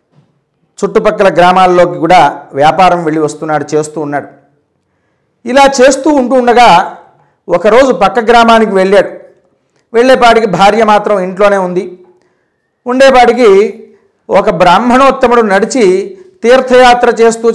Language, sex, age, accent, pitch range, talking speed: Telugu, male, 50-69, native, 175-220 Hz, 90 wpm